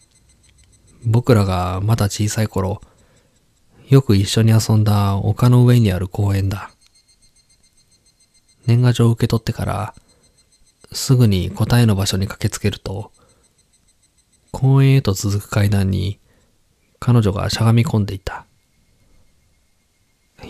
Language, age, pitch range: Japanese, 20-39, 95-115 Hz